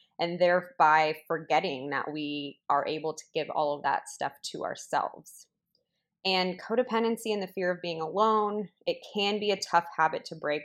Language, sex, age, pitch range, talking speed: English, female, 20-39, 150-185 Hz, 175 wpm